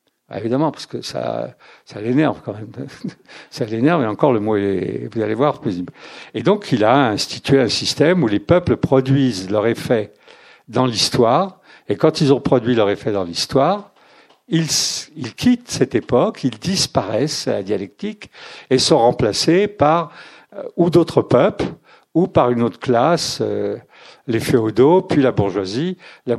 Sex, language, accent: male, French, French